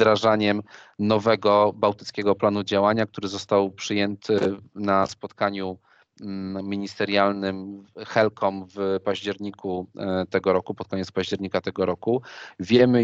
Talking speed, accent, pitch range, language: 100 wpm, native, 100-110 Hz, Polish